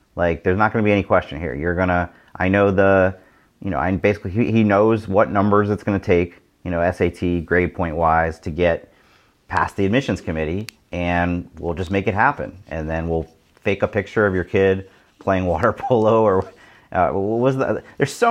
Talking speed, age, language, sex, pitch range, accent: 205 wpm, 40-59, English, male, 85-100 Hz, American